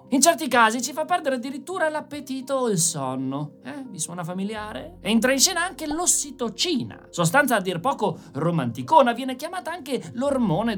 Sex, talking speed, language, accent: male, 160 wpm, Italian, native